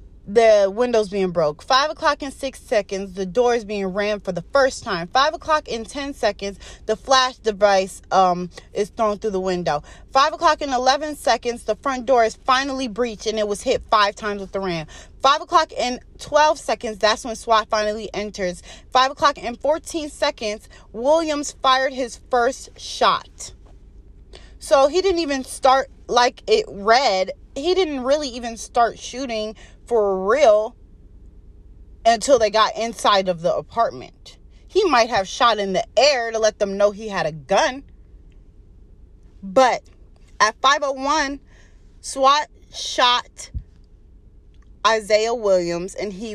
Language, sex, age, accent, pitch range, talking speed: English, female, 20-39, American, 185-265 Hz, 155 wpm